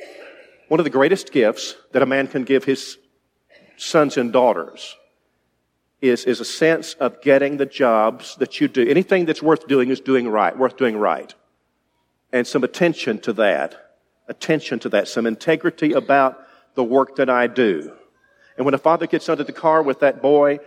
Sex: male